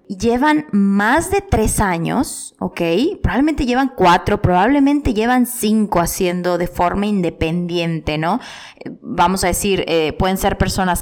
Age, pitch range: 20-39, 175-250 Hz